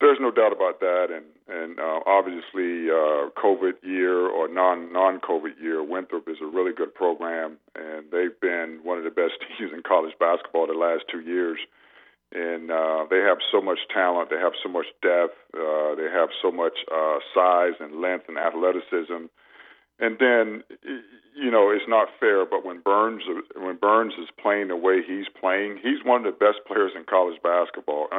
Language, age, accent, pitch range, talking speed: English, 50-69, American, 85-105 Hz, 185 wpm